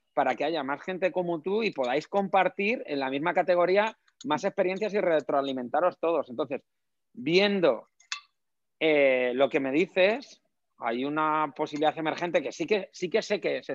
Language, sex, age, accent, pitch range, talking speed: Spanish, male, 30-49, Spanish, 145-190 Hz, 160 wpm